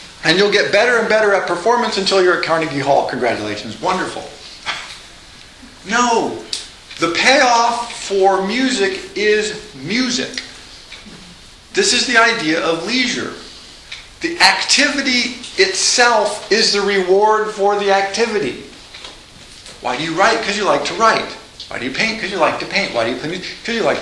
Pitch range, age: 180-245 Hz, 50-69